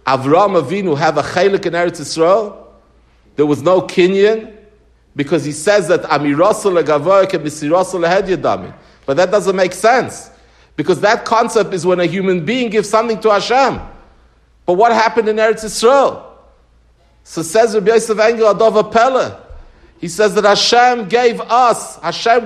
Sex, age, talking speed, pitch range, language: male, 50-69, 150 wpm, 195-250 Hz, English